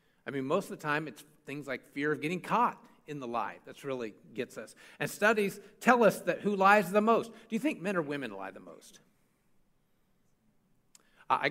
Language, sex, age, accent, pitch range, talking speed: English, male, 50-69, American, 145-195 Hz, 205 wpm